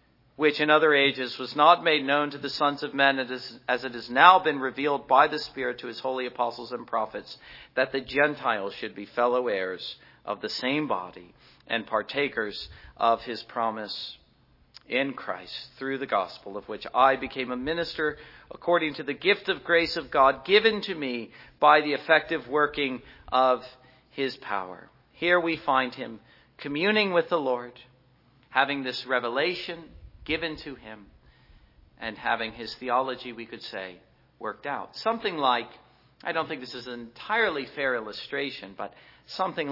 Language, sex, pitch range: English, male, 125-155 Hz